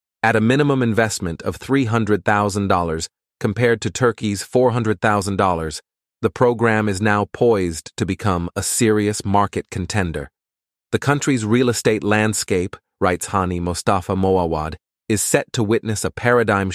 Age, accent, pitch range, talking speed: 30-49, American, 95-110 Hz, 130 wpm